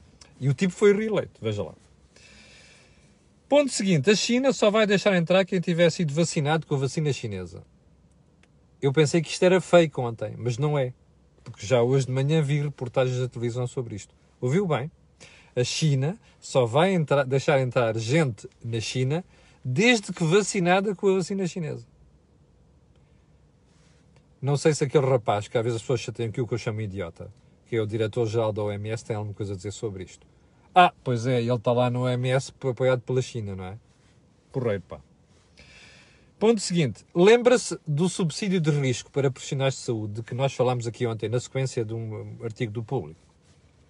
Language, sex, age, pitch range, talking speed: Portuguese, male, 40-59, 115-165 Hz, 180 wpm